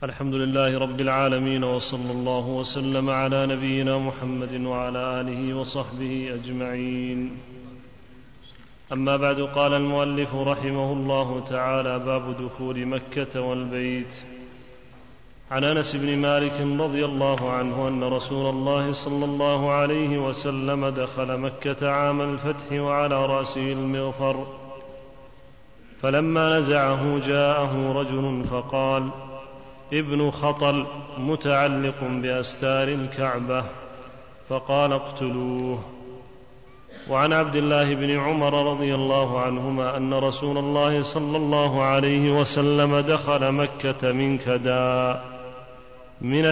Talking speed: 100 wpm